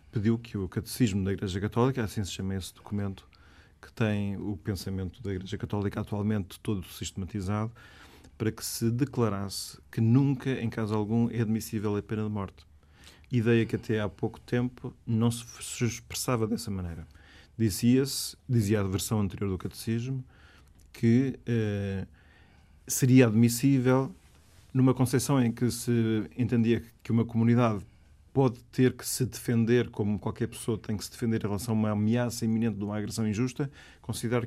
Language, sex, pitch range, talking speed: Portuguese, male, 100-120 Hz, 160 wpm